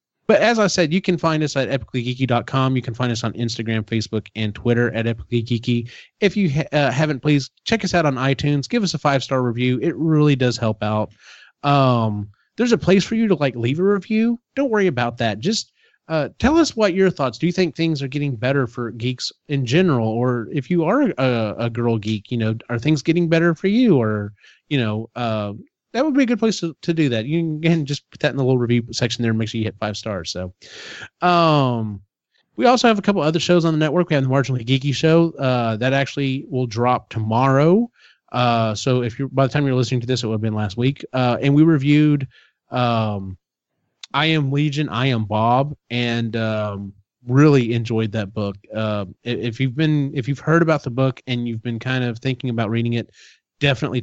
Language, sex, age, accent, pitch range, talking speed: English, male, 30-49, American, 115-155 Hz, 225 wpm